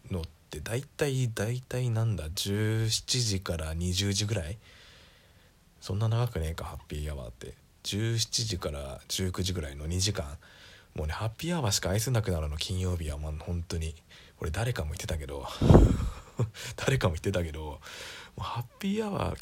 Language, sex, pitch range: Japanese, male, 80-110 Hz